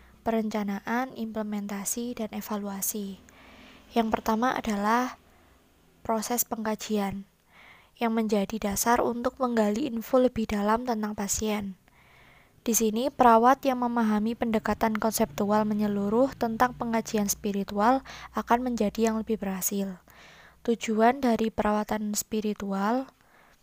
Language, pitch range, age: Indonesian, 210-240 Hz, 20-39